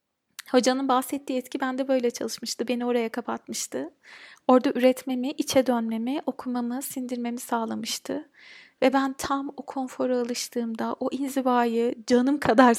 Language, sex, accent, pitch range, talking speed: Turkish, female, native, 235-275 Hz, 120 wpm